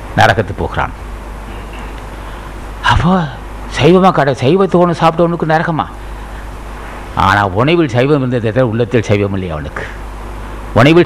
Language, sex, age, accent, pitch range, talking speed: Tamil, male, 50-69, native, 105-145 Hz, 85 wpm